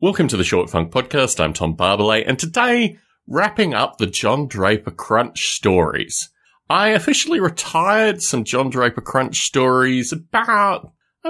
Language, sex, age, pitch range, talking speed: English, male, 30-49, 90-140 Hz, 150 wpm